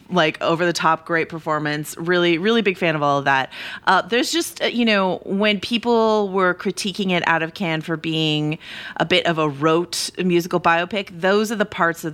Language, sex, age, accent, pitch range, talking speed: English, female, 30-49, American, 155-190 Hz, 195 wpm